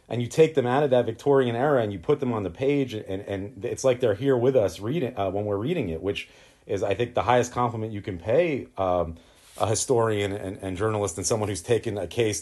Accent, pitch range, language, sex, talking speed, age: American, 105-135 Hz, English, male, 250 wpm, 30-49